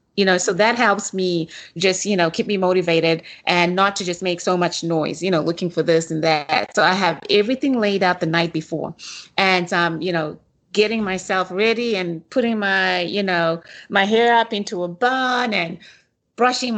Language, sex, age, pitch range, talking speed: English, female, 30-49, 180-225 Hz, 200 wpm